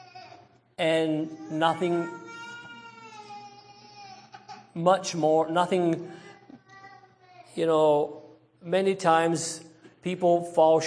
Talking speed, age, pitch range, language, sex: 60 wpm, 50-69, 150-190 Hz, English, male